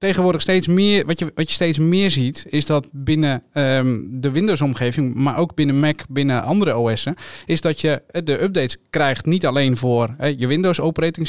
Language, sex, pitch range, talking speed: Dutch, male, 130-155 Hz, 185 wpm